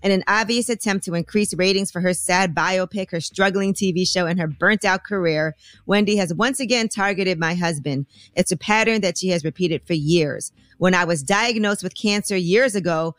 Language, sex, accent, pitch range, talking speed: English, female, American, 170-200 Hz, 195 wpm